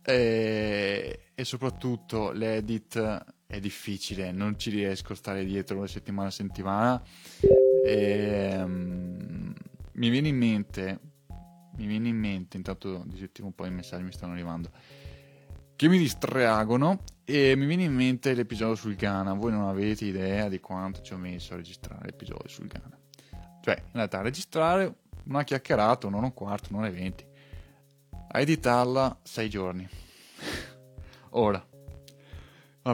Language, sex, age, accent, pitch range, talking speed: Italian, male, 20-39, native, 90-120 Hz, 145 wpm